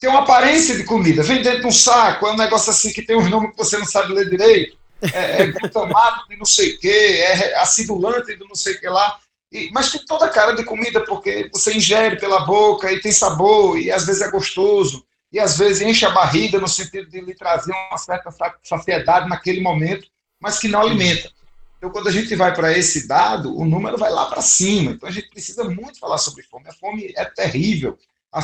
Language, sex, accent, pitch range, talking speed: Portuguese, male, Brazilian, 170-210 Hz, 225 wpm